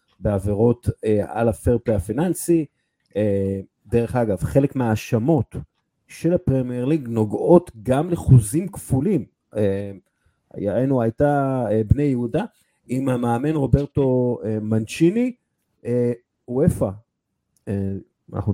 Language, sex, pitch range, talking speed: Hebrew, male, 105-135 Hz, 105 wpm